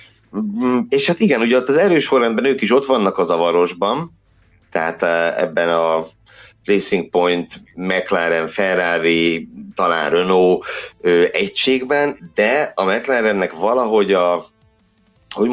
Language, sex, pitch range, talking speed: Hungarian, male, 85-130 Hz, 110 wpm